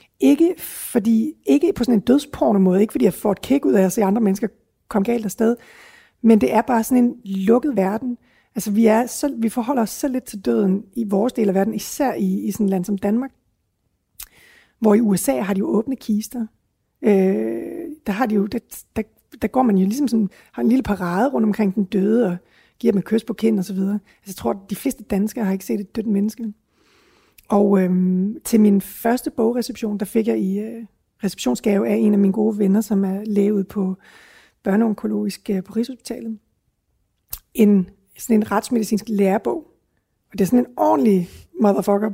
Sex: female